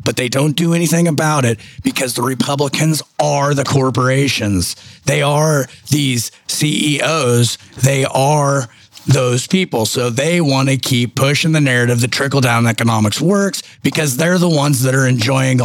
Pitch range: 120-150 Hz